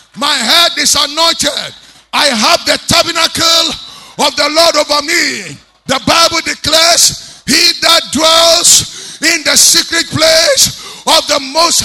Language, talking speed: English, 130 wpm